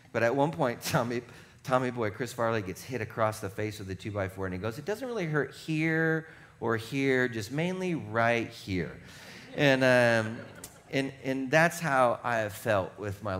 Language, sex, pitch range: English, male, 100-130 Hz